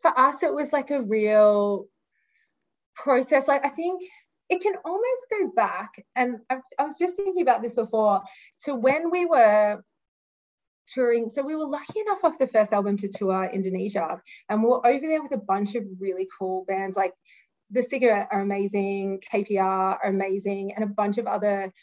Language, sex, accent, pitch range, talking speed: English, female, Australian, 200-265 Hz, 180 wpm